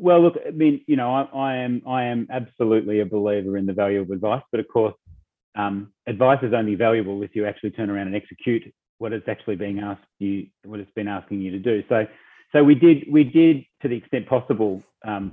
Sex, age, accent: male, 30-49, Australian